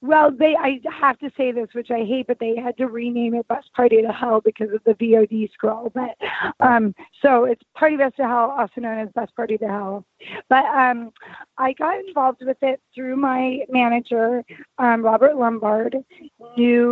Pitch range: 225-270 Hz